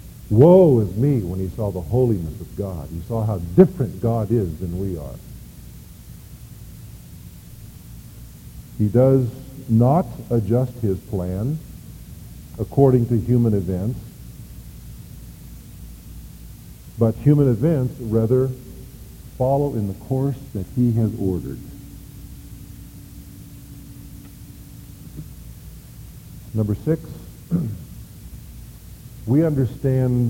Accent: American